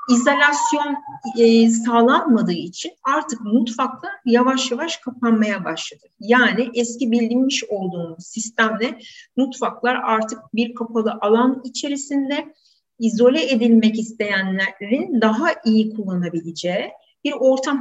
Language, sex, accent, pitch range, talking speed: Turkish, female, native, 200-245 Hz, 95 wpm